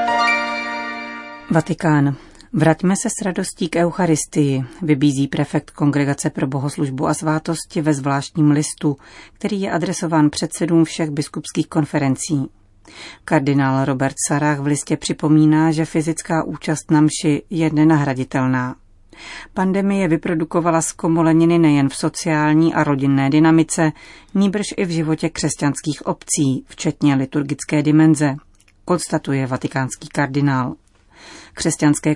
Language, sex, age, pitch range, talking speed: Czech, female, 40-59, 145-165 Hz, 110 wpm